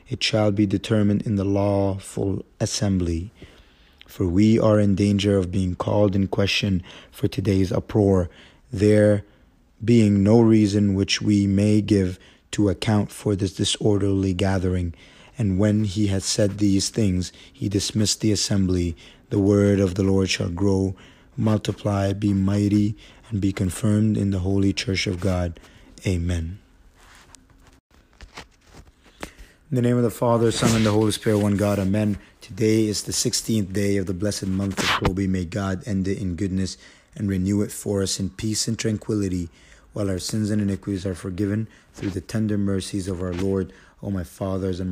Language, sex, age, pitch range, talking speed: English, male, 30-49, 95-105 Hz, 165 wpm